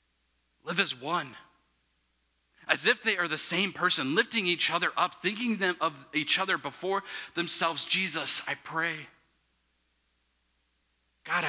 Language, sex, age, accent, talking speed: English, male, 30-49, American, 125 wpm